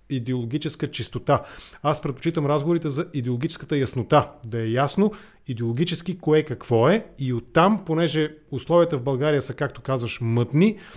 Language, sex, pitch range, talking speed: English, male, 130-165 Hz, 135 wpm